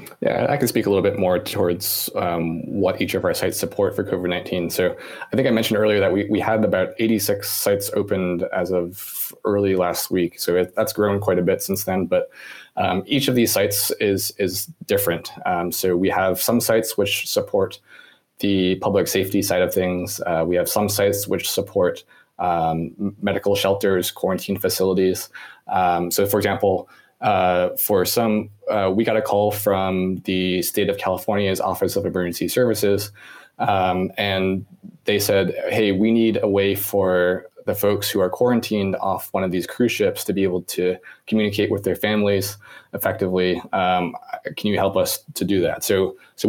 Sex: male